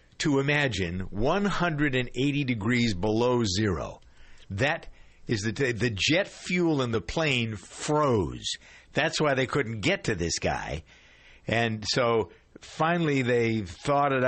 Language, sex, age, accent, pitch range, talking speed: English, male, 60-79, American, 95-130 Hz, 125 wpm